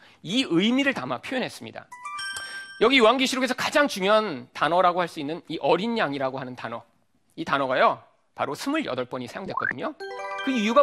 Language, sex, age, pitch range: Korean, male, 40-59, 195-295 Hz